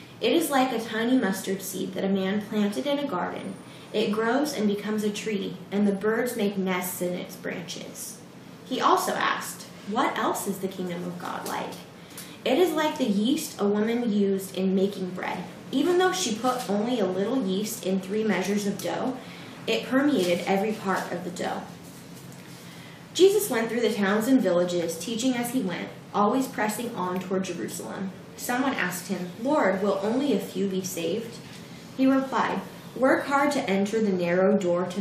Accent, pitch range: American, 185-230 Hz